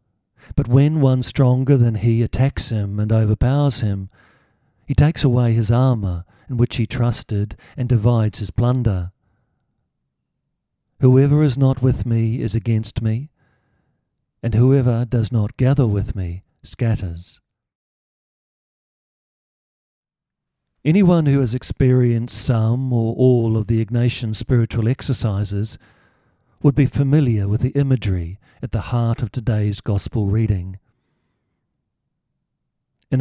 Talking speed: 120 wpm